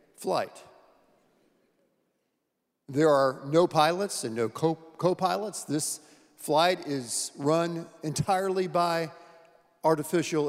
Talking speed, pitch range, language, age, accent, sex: 85 wpm, 150-200 Hz, English, 50-69, American, male